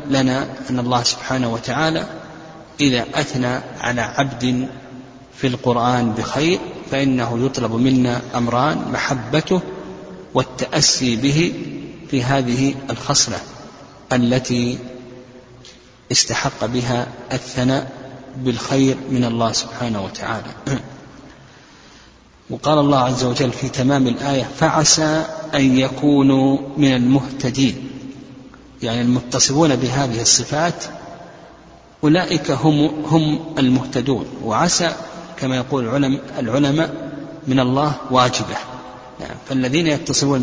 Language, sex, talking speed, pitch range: Arabic, male, 90 wpm, 125-140 Hz